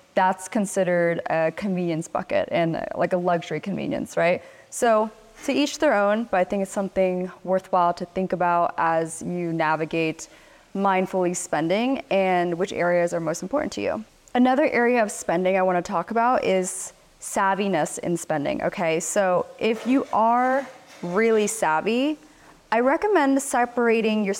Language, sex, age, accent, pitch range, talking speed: English, female, 20-39, American, 175-220 Hz, 150 wpm